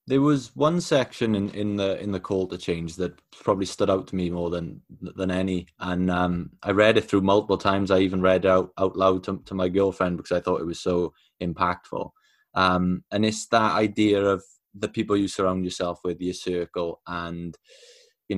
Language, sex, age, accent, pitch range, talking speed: English, male, 20-39, British, 90-105 Hz, 205 wpm